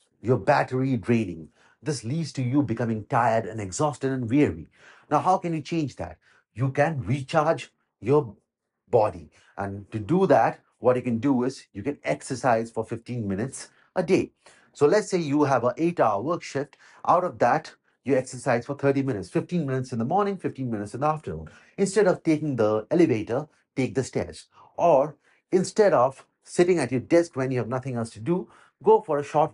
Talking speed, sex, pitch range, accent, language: 195 wpm, male, 115-155 Hz, Indian, English